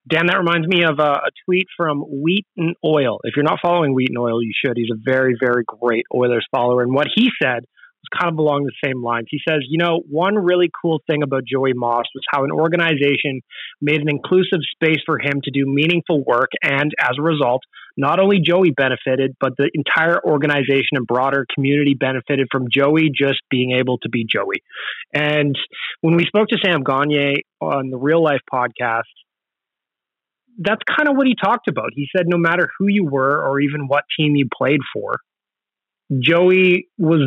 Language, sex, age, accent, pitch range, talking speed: English, male, 30-49, American, 135-165 Hz, 195 wpm